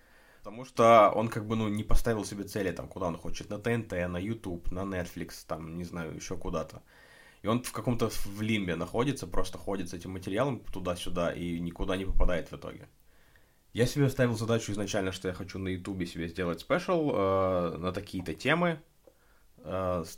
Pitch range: 90-105 Hz